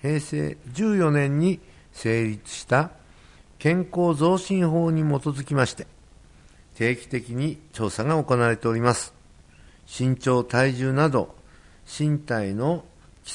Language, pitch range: Japanese, 100-155 Hz